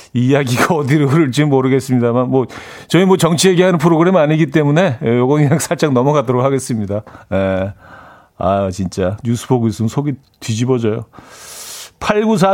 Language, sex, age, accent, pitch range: Korean, male, 40-59, native, 110-150 Hz